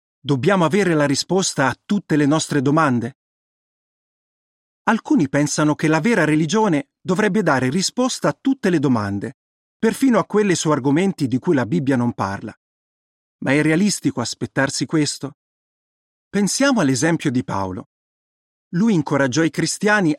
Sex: male